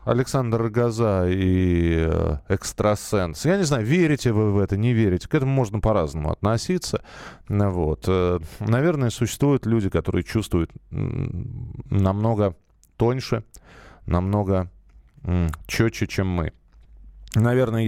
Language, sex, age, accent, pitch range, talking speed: Russian, male, 20-39, native, 95-135 Hz, 105 wpm